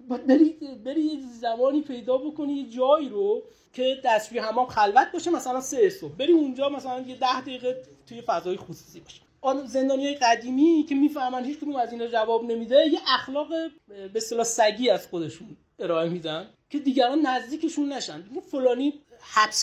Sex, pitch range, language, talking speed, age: male, 195-290 Hz, Persian, 155 wpm, 30-49